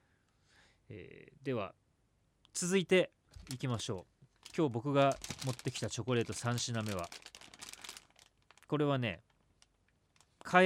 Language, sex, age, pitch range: Japanese, male, 40-59, 105-170 Hz